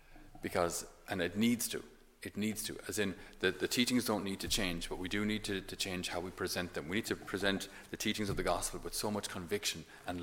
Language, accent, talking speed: English, Irish, 245 wpm